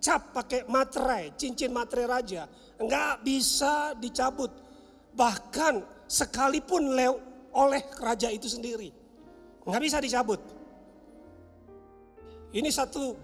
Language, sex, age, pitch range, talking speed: Indonesian, male, 40-59, 220-290 Hz, 95 wpm